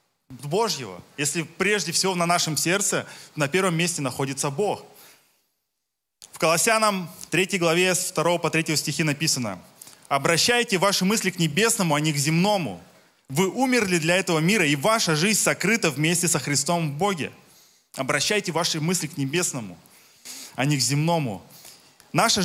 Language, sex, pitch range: Russian, male, 150-200 Hz